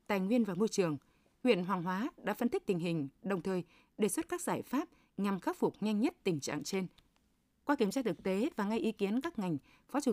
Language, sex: Vietnamese, female